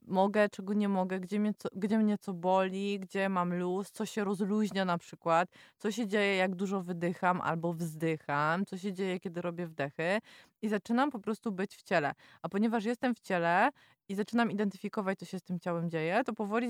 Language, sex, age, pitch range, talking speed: Polish, female, 20-39, 180-220 Hz, 200 wpm